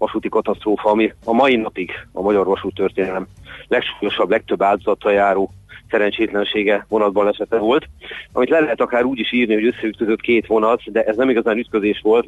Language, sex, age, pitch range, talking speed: Hungarian, male, 40-59, 95-110 Hz, 165 wpm